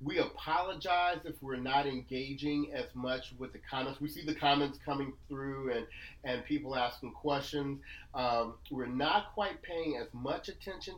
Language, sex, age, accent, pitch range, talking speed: English, male, 40-59, American, 120-155 Hz, 165 wpm